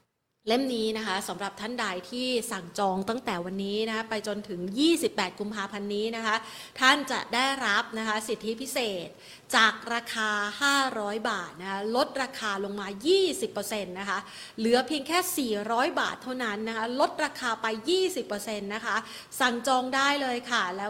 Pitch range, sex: 205-250 Hz, female